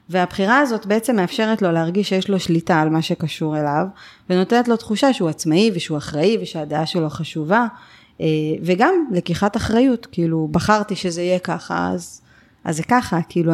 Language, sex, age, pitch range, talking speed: Hebrew, female, 30-49, 165-200 Hz, 160 wpm